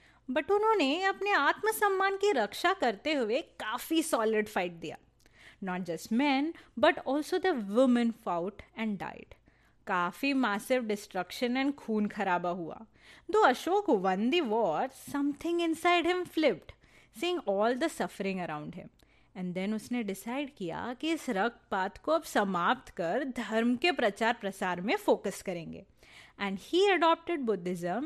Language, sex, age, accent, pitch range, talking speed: Hindi, female, 30-49, native, 200-340 Hz, 145 wpm